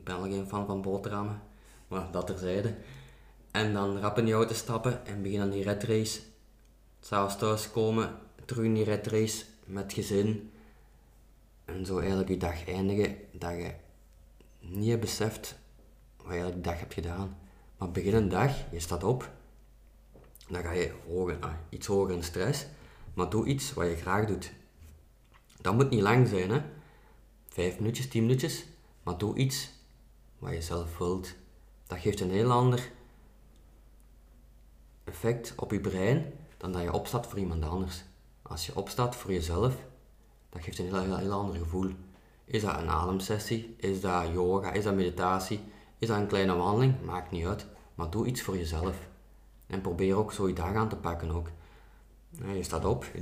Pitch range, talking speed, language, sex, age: 90-110 Hz, 170 wpm, Dutch, male, 20-39